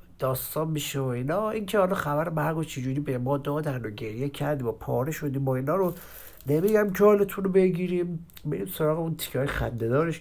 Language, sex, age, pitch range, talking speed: Persian, male, 60-79, 130-185 Hz, 195 wpm